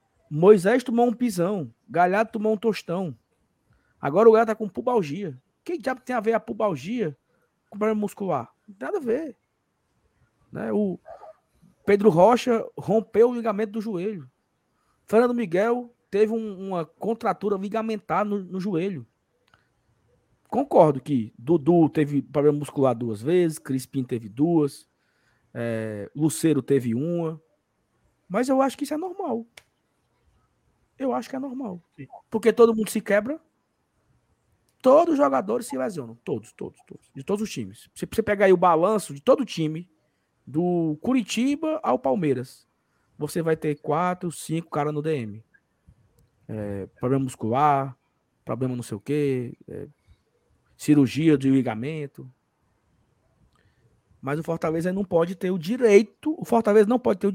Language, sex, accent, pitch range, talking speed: Portuguese, male, Brazilian, 140-220 Hz, 145 wpm